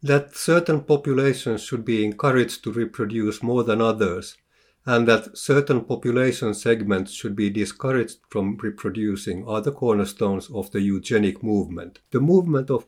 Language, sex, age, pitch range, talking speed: English, male, 50-69, 105-135 Hz, 145 wpm